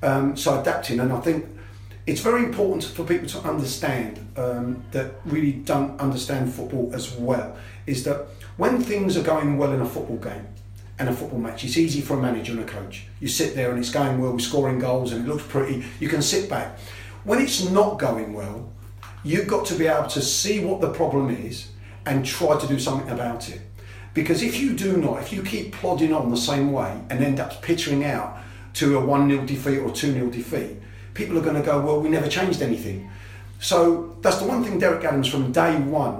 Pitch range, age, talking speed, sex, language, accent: 115-155 Hz, 40-59, 215 wpm, male, English, British